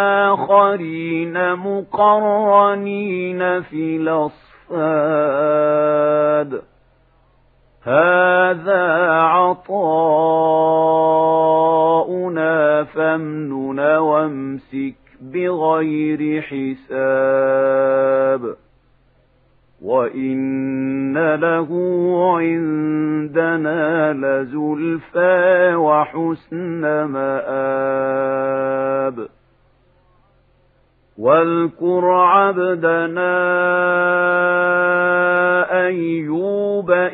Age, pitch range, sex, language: 50-69, 135-175 Hz, male, Arabic